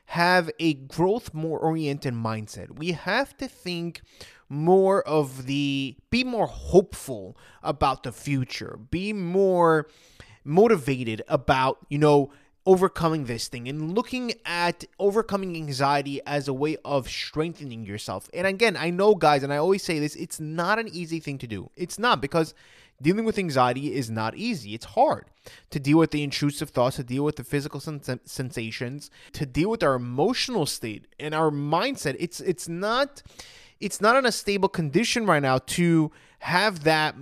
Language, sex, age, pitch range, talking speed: English, male, 20-39, 140-190 Hz, 165 wpm